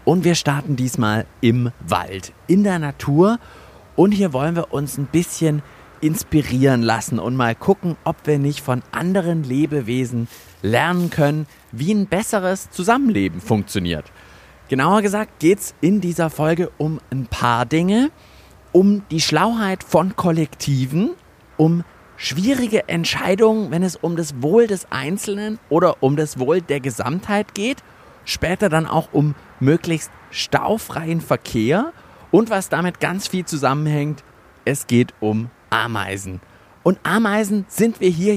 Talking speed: 140 wpm